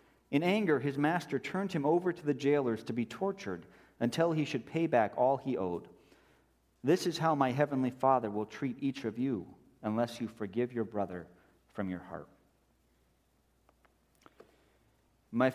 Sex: male